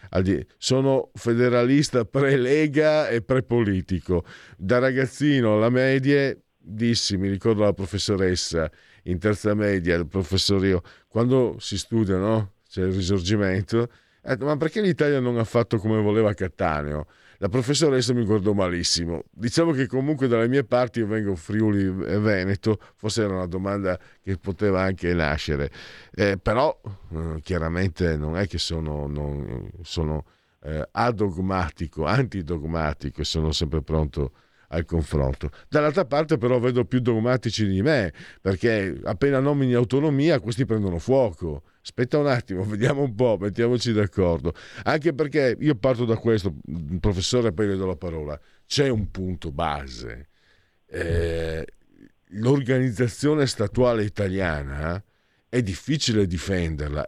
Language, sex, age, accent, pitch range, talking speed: Italian, male, 50-69, native, 90-125 Hz, 130 wpm